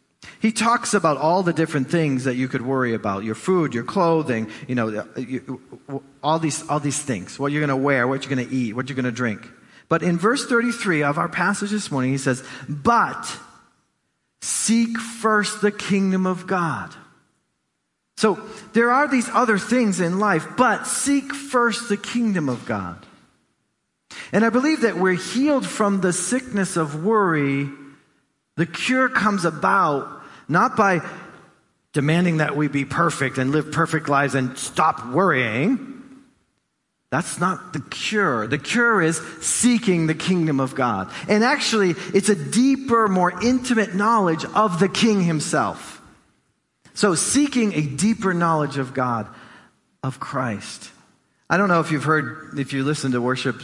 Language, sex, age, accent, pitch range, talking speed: English, male, 40-59, American, 135-210 Hz, 160 wpm